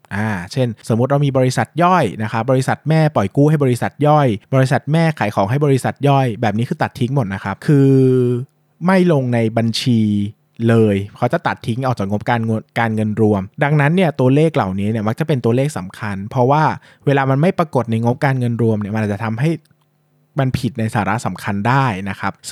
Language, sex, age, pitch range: Thai, male, 20-39, 110-145 Hz